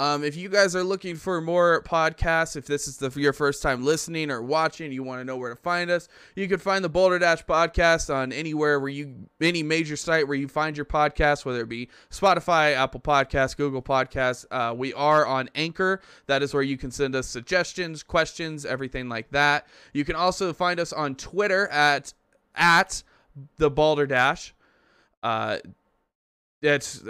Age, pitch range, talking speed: 20-39, 135-170 Hz, 190 wpm